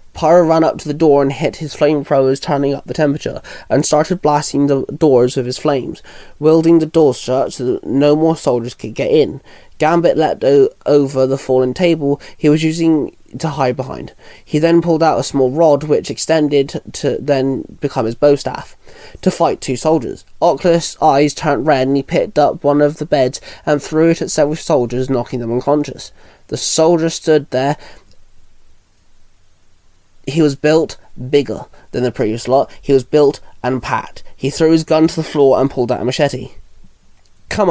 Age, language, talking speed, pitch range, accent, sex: 20-39, English, 190 wpm, 130-155 Hz, British, male